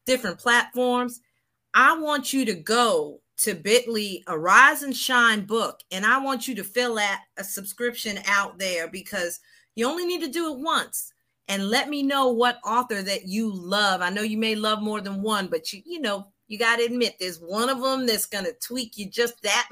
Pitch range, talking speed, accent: 180-245 Hz, 210 wpm, American